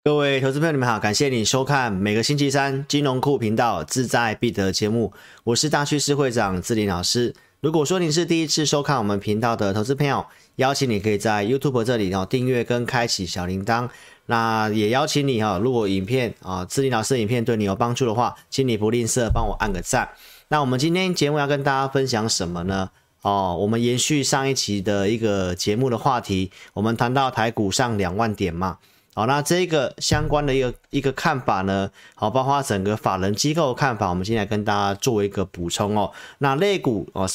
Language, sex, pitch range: Chinese, male, 100-135 Hz